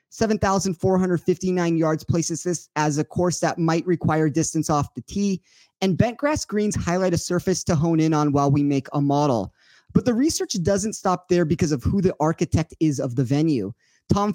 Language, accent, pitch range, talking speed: English, American, 150-185 Hz, 190 wpm